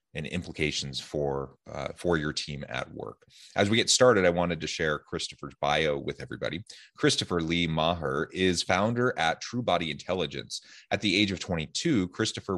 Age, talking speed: 30-49, 170 wpm